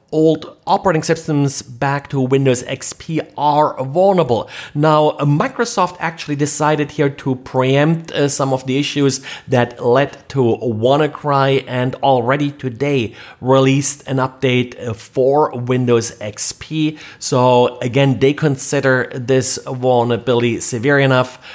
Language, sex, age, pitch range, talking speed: English, male, 40-59, 120-145 Hz, 115 wpm